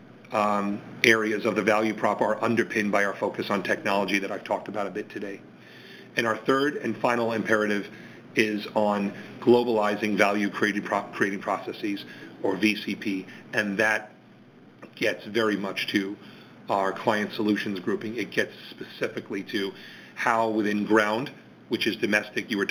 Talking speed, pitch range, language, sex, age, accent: 145 wpm, 100-110 Hz, English, male, 40-59, American